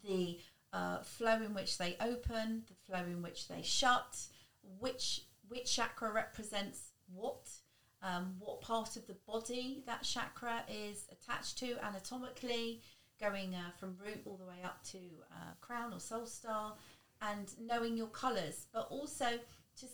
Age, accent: 40-59, British